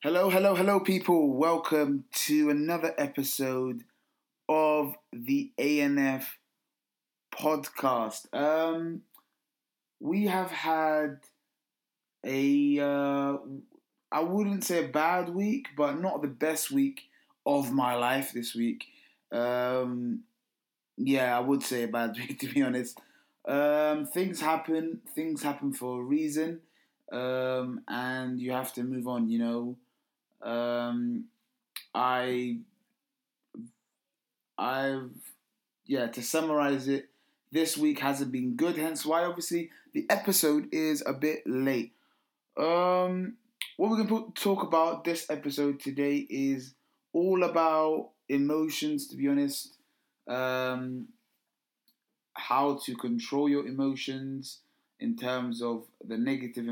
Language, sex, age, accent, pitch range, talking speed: English, male, 20-39, British, 130-185 Hz, 115 wpm